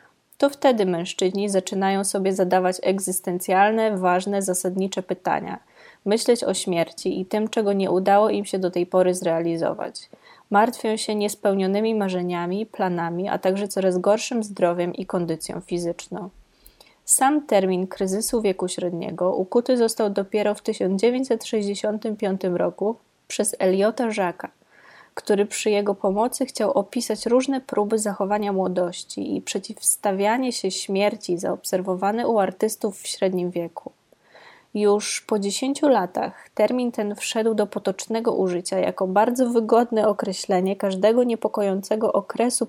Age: 20-39